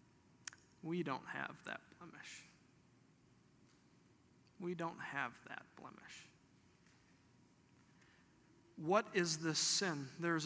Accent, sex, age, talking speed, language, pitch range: American, male, 50-69, 85 wpm, English, 140-175 Hz